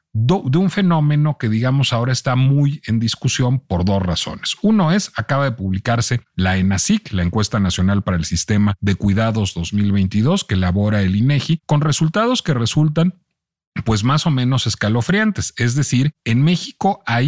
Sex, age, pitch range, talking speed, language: male, 40-59, 100-145 Hz, 165 wpm, Spanish